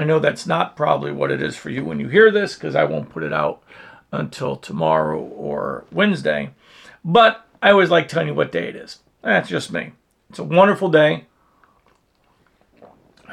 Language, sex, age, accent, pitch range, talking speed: English, male, 50-69, American, 150-185 Hz, 190 wpm